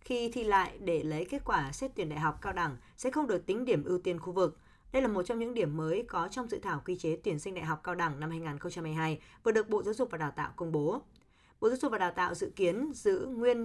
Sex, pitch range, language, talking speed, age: female, 165-230 Hz, Vietnamese, 275 wpm, 20-39